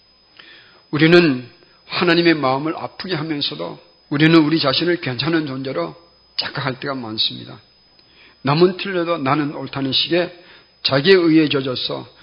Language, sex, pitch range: Korean, male, 135-175 Hz